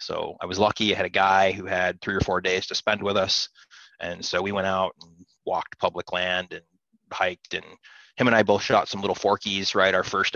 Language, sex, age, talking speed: English, male, 30-49, 240 wpm